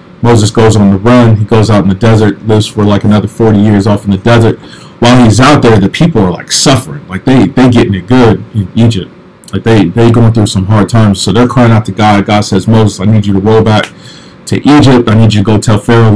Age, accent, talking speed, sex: 40-59, American, 260 wpm, male